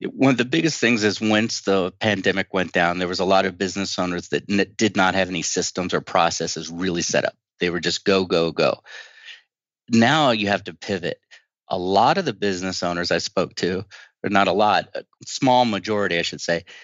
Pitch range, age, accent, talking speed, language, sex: 95-110 Hz, 40-59, American, 210 wpm, English, male